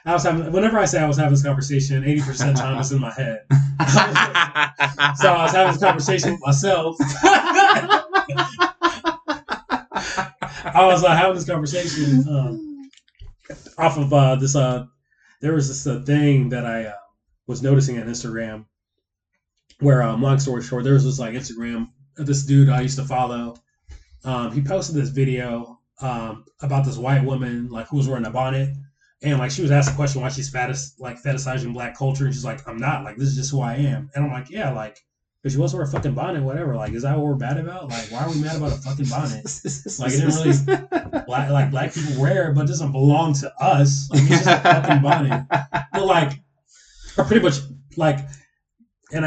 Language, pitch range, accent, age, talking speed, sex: English, 130-150 Hz, American, 20-39, 205 wpm, male